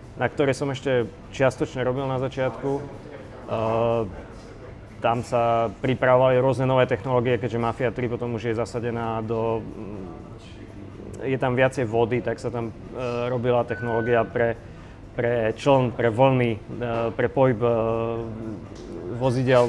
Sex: male